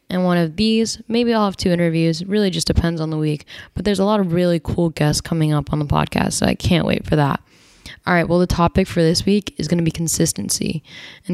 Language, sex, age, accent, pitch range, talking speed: English, female, 10-29, American, 160-180 Hz, 250 wpm